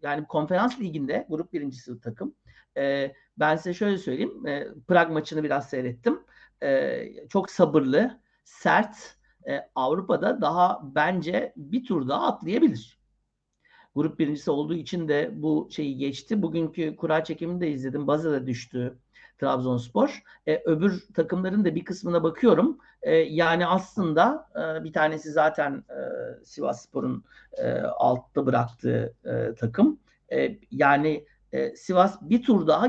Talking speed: 135 wpm